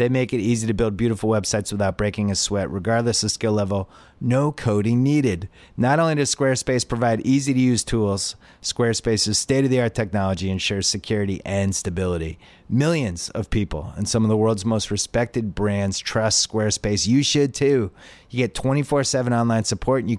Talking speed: 165 wpm